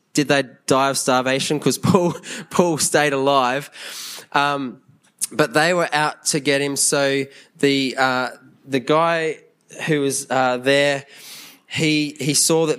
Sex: male